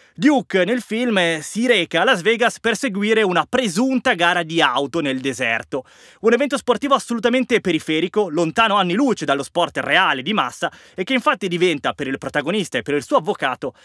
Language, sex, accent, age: Italian, male, native, 20-39